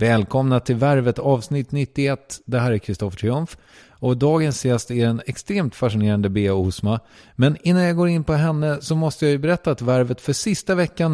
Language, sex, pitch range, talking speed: English, male, 115-160 Hz, 190 wpm